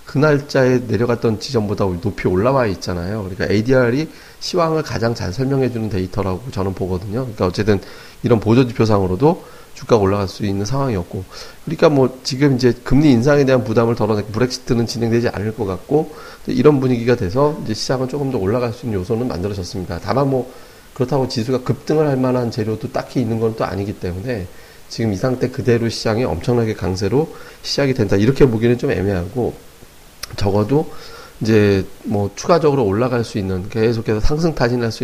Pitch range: 100-130 Hz